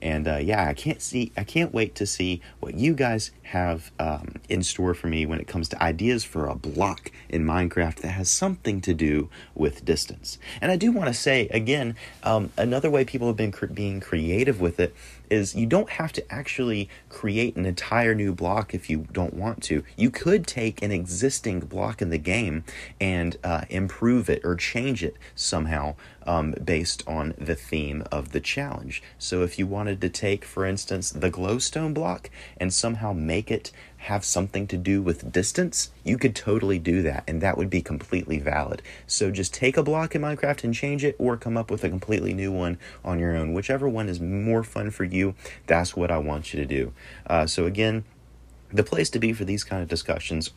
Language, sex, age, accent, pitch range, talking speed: English, male, 30-49, American, 85-110 Hz, 210 wpm